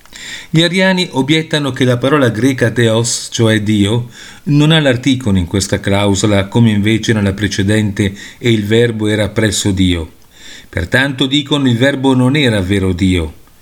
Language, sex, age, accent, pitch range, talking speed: Italian, male, 40-59, native, 100-140 Hz, 150 wpm